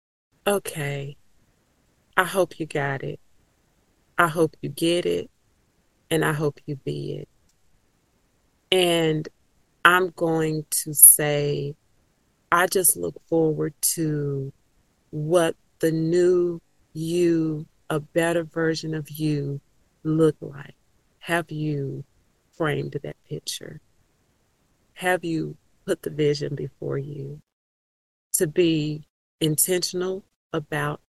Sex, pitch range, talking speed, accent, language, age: female, 145-170 Hz, 105 wpm, American, English, 40-59